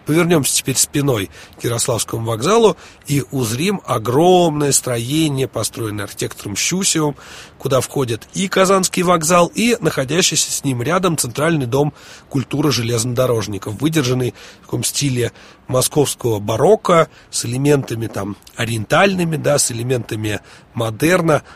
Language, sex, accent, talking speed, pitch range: Russian, male, native, 110 wpm, 120-165 Hz